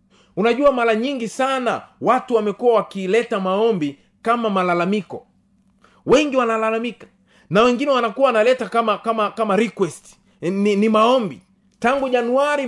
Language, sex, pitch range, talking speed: Swahili, male, 175-235 Hz, 120 wpm